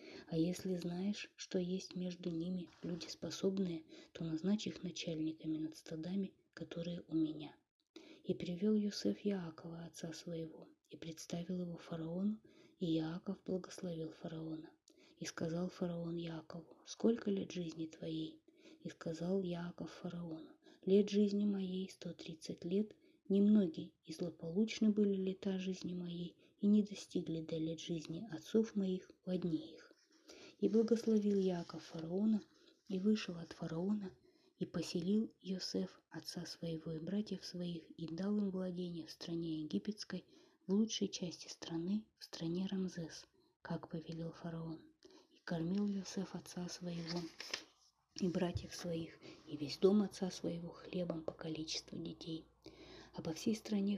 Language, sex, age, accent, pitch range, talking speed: Russian, female, 20-39, native, 165-205 Hz, 135 wpm